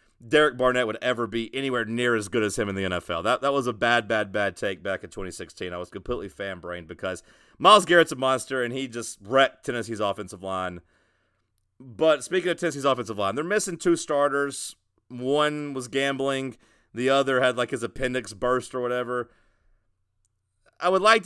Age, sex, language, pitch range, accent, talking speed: 40-59, male, English, 100-140 Hz, American, 185 wpm